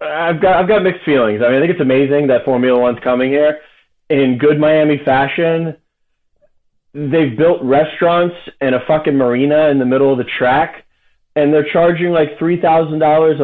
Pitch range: 135-170 Hz